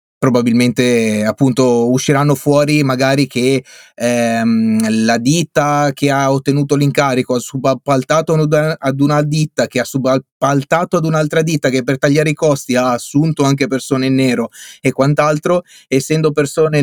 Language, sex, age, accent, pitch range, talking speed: Italian, male, 30-49, native, 130-160 Hz, 140 wpm